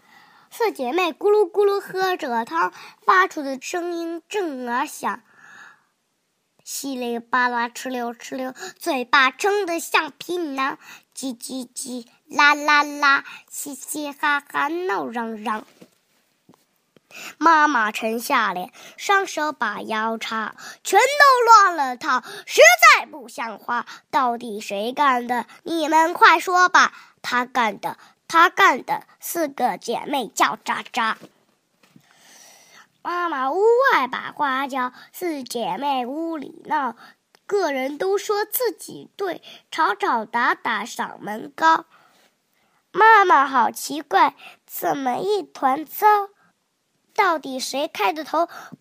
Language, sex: Chinese, male